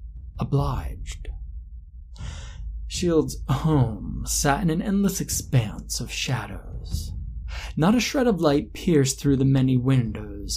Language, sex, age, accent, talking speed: English, male, 20-39, American, 115 wpm